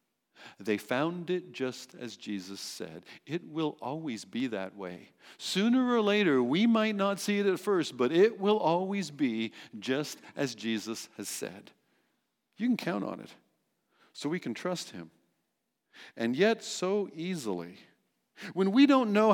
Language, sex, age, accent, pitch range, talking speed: English, male, 50-69, American, 130-205 Hz, 160 wpm